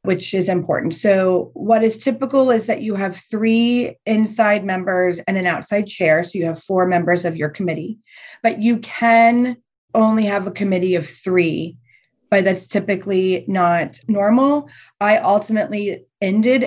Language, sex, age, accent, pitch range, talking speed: English, female, 30-49, American, 180-225 Hz, 155 wpm